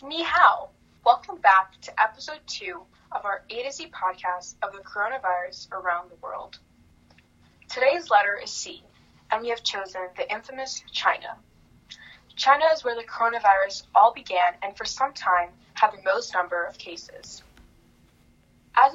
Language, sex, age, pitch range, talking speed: English, female, 10-29, 190-260 Hz, 150 wpm